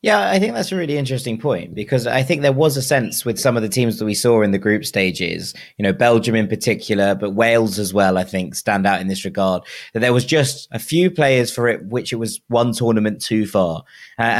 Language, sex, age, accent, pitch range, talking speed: English, male, 20-39, British, 110-140 Hz, 250 wpm